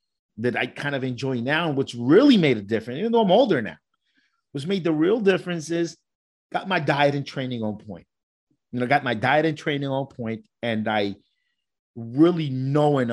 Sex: male